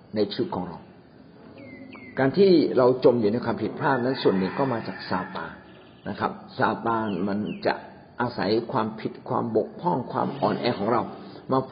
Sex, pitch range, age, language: male, 110-170 Hz, 60-79, Thai